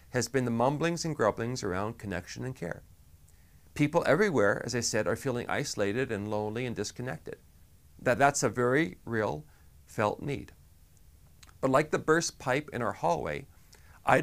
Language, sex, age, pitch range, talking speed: English, male, 40-59, 85-135 Hz, 155 wpm